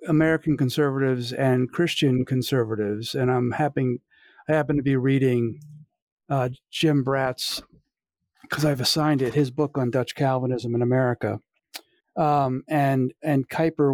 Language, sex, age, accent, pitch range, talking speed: English, male, 50-69, American, 130-155 Hz, 135 wpm